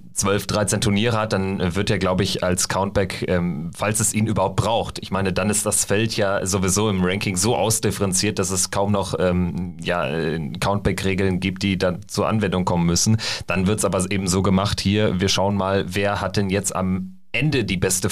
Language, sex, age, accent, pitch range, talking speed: German, male, 30-49, German, 95-110 Hz, 200 wpm